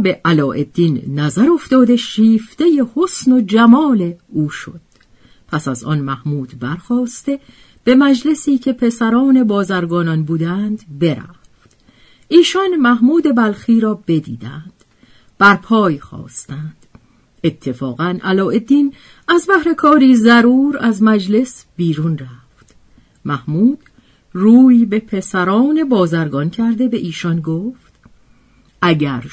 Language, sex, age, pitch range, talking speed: Persian, female, 50-69, 165-260 Hz, 100 wpm